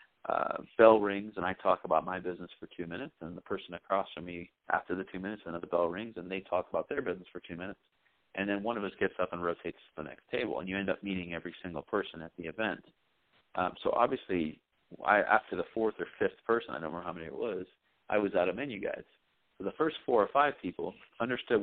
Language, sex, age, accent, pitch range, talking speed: English, male, 40-59, American, 85-100 Hz, 245 wpm